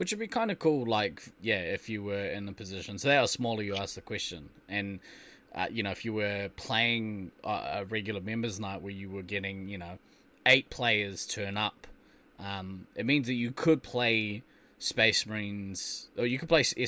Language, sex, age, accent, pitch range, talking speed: English, male, 20-39, Australian, 100-115 Hz, 205 wpm